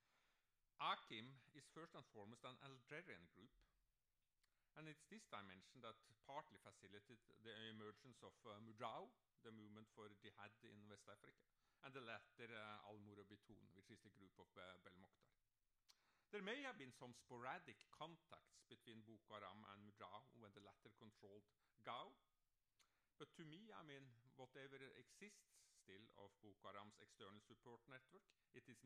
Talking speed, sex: 150 wpm, male